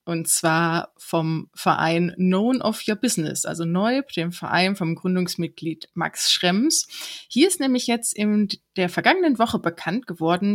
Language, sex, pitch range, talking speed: German, female, 175-245 Hz, 150 wpm